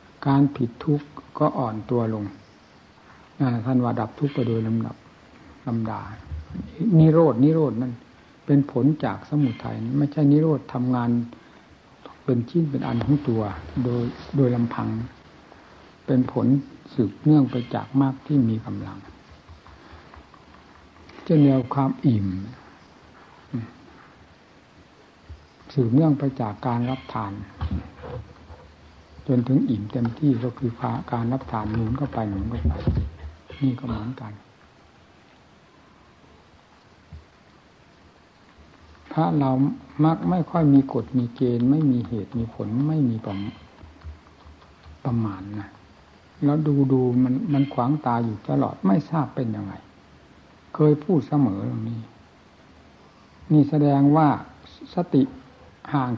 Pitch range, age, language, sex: 100-140 Hz, 60-79, Thai, male